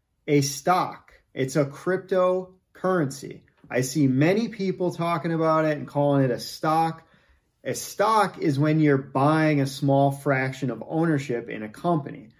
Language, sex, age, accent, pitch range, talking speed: English, male, 30-49, American, 135-170 Hz, 150 wpm